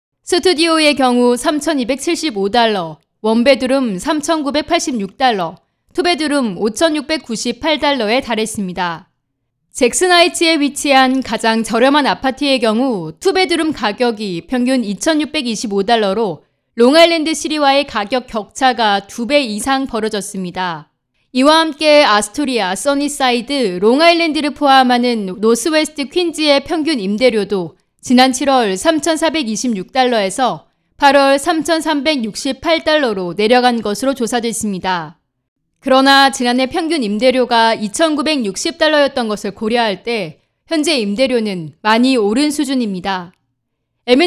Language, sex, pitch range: Korean, female, 210-295 Hz